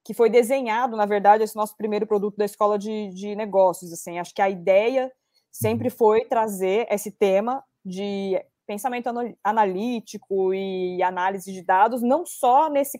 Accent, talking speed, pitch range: Brazilian, 155 wpm, 195-235 Hz